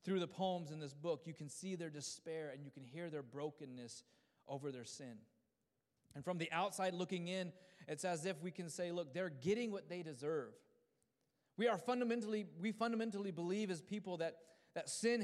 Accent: American